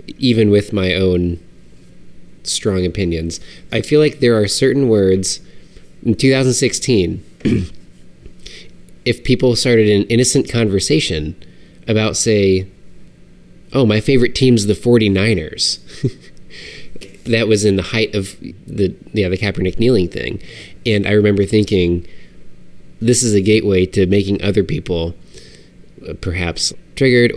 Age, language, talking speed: 20-39, English, 120 wpm